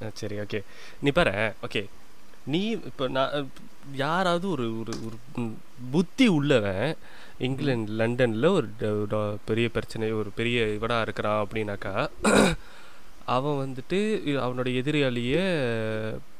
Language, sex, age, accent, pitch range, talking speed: Tamil, male, 20-39, native, 115-155 Hz, 100 wpm